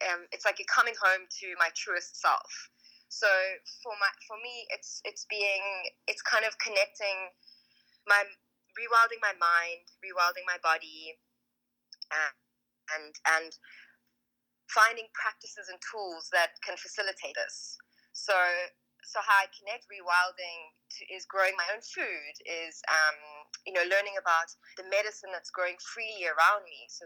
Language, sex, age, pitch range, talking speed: English, female, 20-39, 170-210 Hz, 145 wpm